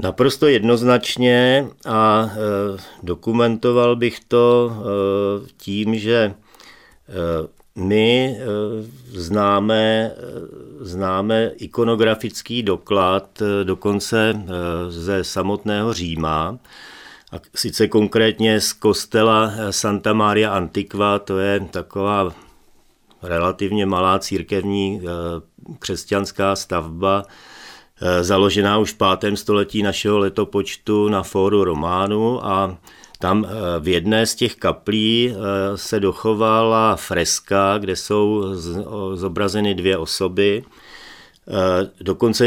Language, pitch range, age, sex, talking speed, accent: Czech, 95-110 Hz, 40-59, male, 80 wpm, native